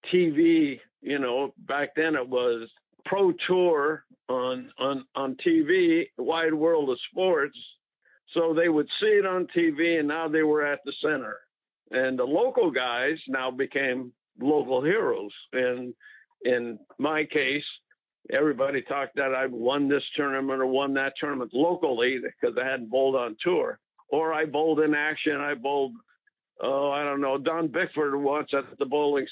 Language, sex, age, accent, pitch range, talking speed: English, male, 60-79, American, 135-175 Hz, 160 wpm